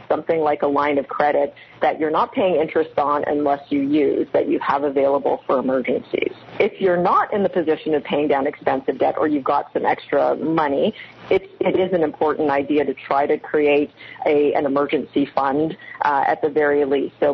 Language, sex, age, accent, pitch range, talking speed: English, female, 40-59, American, 145-175 Hz, 195 wpm